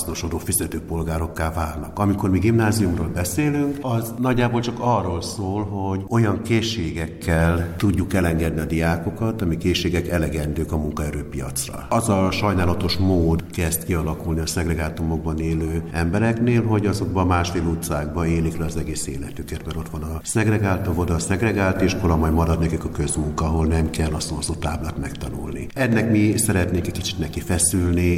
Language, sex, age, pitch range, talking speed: Hungarian, male, 60-79, 80-95 Hz, 150 wpm